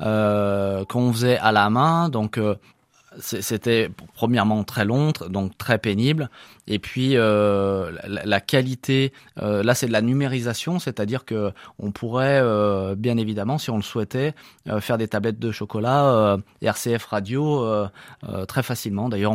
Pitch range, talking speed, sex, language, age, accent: 105-130 Hz, 160 wpm, male, French, 20-39, French